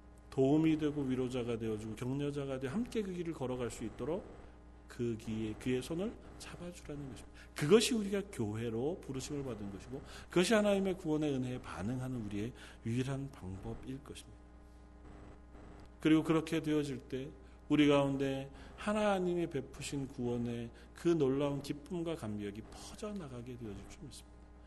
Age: 40-59